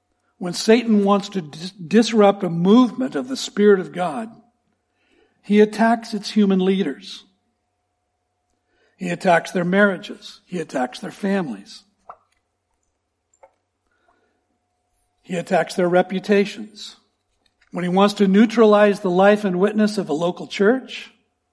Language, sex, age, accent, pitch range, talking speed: English, male, 60-79, American, 175-225 Hz, 115 wpm